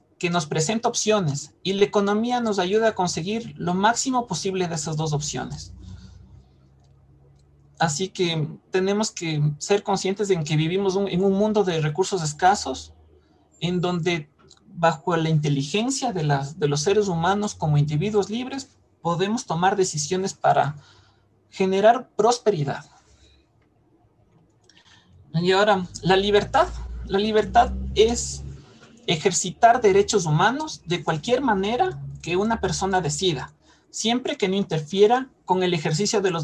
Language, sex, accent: Spanish, male, Mexican